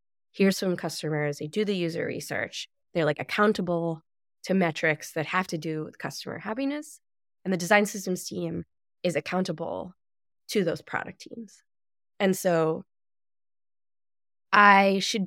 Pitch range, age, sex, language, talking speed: 165-210 Hz, 20-39, female, English, 140 wpm